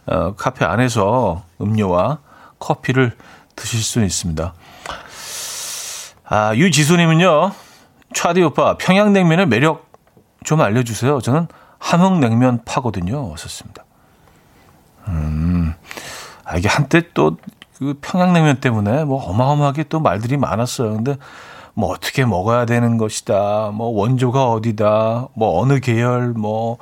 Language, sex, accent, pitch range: Korean, male, native, 115-150 Hz